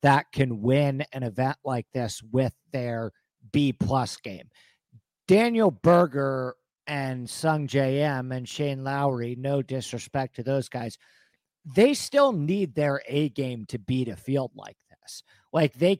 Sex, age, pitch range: male, 50-69, 125-150 Hz